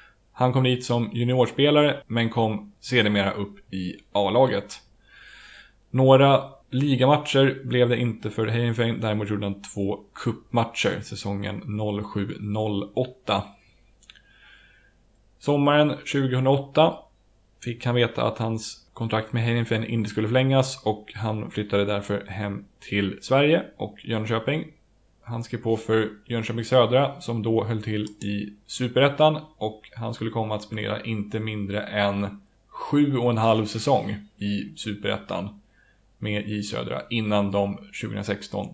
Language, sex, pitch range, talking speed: Swedish, male, 105-125 Hz, 125 wpm